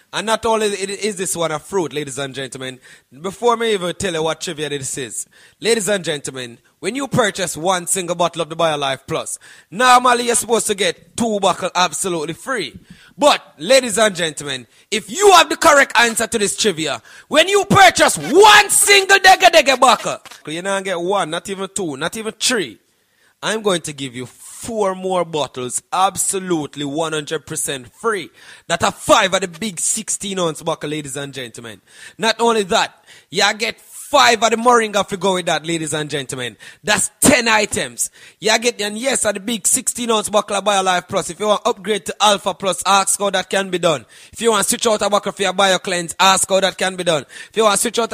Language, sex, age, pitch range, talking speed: English, male, 20-39, 165-220 Hz, 205 wpm